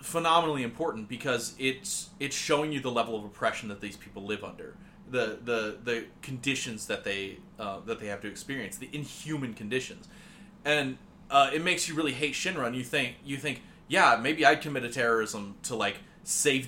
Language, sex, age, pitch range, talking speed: English, male, 30-49, 120-170 Hz, 195 wpm